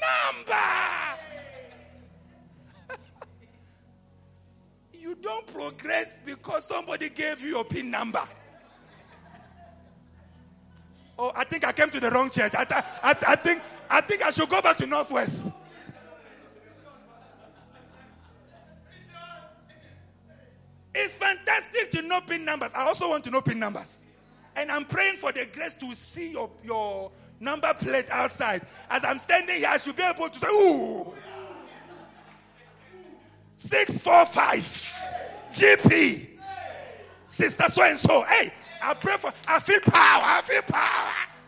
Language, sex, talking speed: English, male, 125 wpm